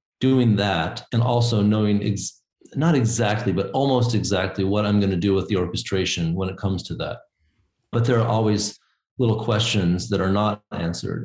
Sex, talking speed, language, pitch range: male, 175 wpm, English, 95-120 Hz